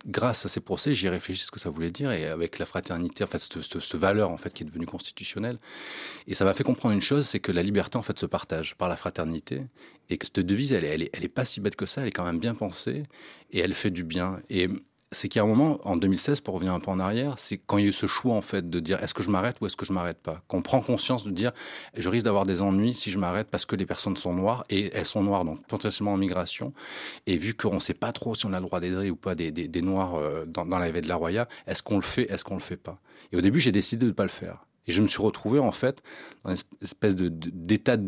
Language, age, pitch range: French, 30-49, 90-110 Hz